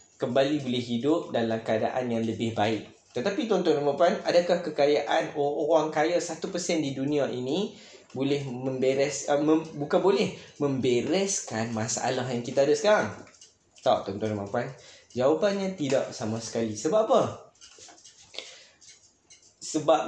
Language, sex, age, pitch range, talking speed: Malay, male, 20-39, 115-155 Hz, 130 wpm